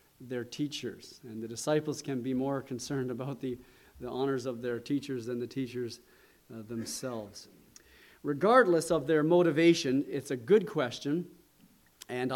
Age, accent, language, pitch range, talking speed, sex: 40-59, American, English, 125-155 Hz, 145 wpm, male